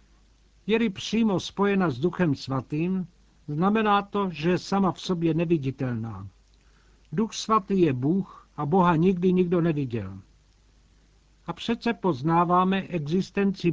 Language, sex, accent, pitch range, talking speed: Czech, male, native, 145-185 Hz, 120 wpm